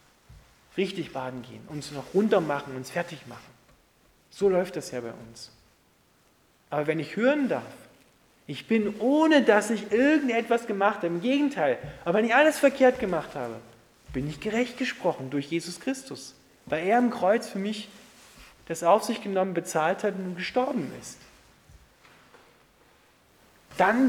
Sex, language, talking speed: male, German, 150 wpm